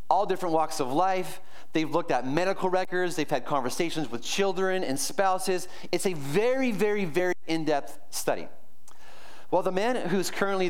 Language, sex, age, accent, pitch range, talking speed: English, male, 30-49, American, 135-185 Hz, 165 wpm